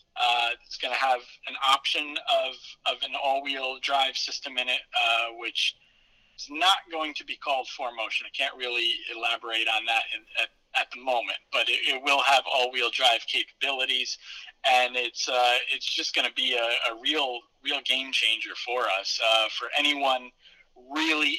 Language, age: English, 40-59